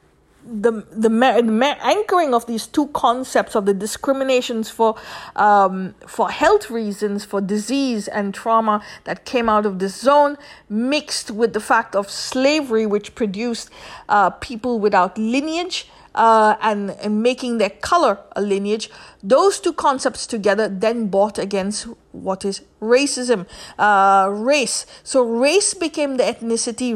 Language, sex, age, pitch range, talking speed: English, female, 50-69, 210-265 Hz, 140 wpm